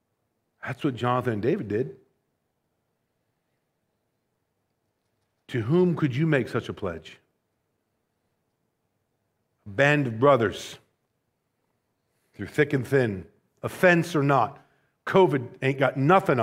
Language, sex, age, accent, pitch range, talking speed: English, male, 50-69, American, 130-195 Hz, 105 wpm